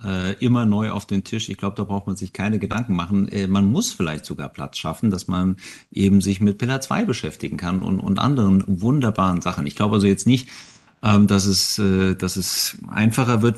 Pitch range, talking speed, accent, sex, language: 95-110 Hz, 200 wpm, German, male, German